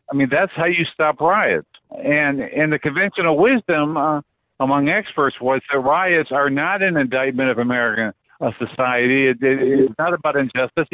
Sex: male